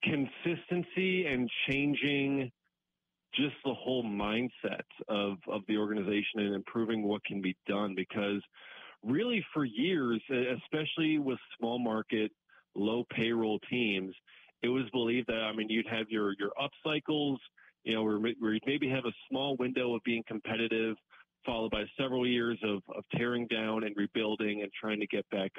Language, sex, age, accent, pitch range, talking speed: English, male, 40-59, American, 110-135 Hz, 155 wpm